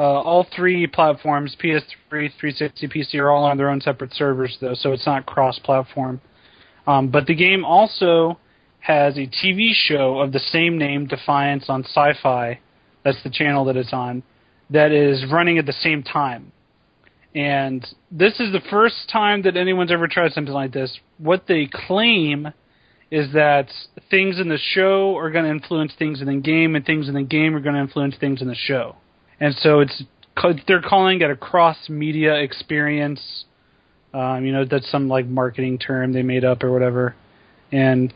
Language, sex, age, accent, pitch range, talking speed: English, male, 30-49, American, 135-165 Hz, 180 wpm